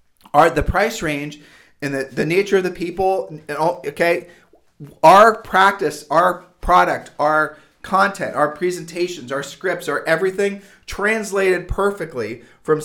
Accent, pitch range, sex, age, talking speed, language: American, 145-180 Hz, male, 40-59, 120 wpm, English